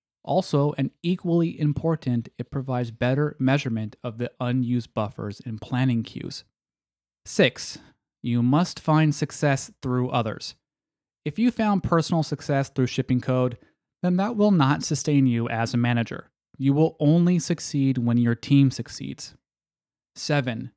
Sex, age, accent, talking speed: male, 30-49, American, 140 wpm